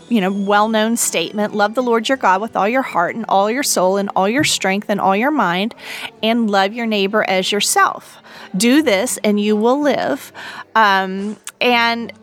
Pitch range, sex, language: 205-260 Hz, female, English